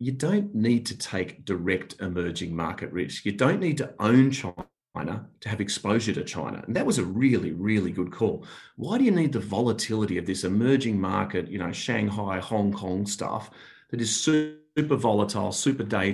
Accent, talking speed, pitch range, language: Australian, 185 wpm, 95-125 Hz, English